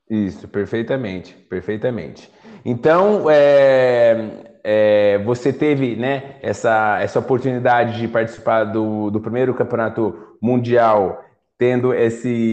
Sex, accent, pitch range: male, Brazilian, 115-145 Hz